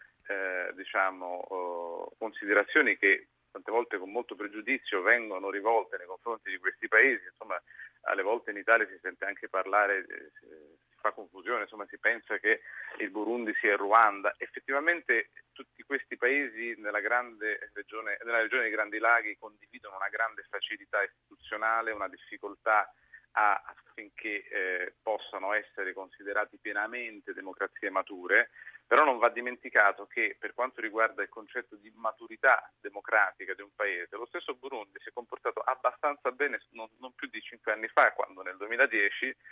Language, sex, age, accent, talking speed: Italian, male, 40-59, native, 145 wpm